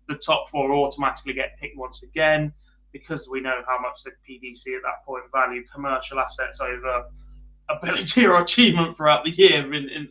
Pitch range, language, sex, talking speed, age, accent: 130-160 Hz, English, male, 180 wpm, 20-39, British